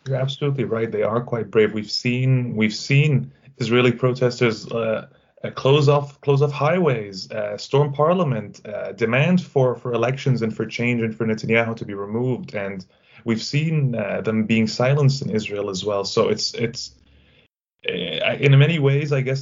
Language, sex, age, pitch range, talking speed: English, male, 20-39, 115-145 Hz, 170 wpm